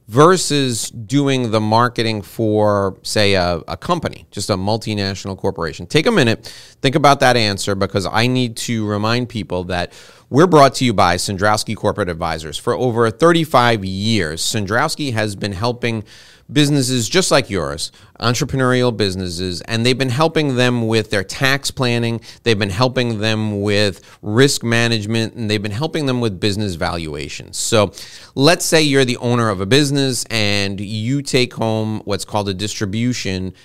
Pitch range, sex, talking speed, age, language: 105-130 Hz, male, 160 wpm, 30-49, English